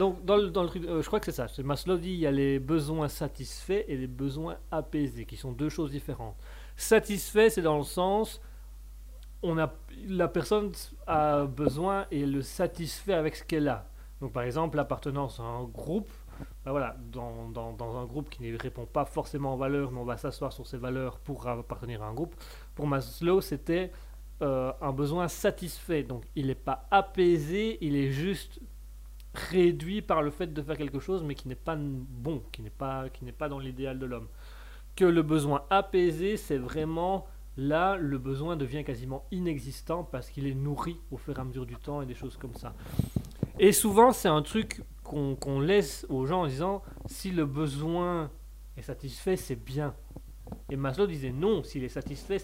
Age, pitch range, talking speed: 30-49, 130-175 Hz, 195 wpm